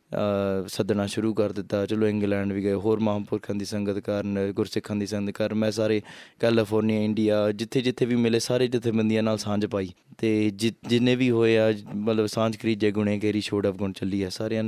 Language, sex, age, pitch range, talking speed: Punjabi, male, 20-39, 105-115 Hz, 190 wpm